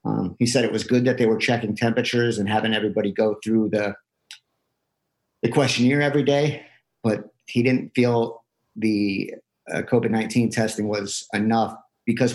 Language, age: English, 50-69